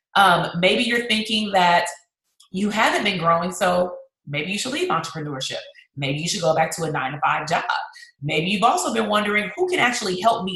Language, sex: English, female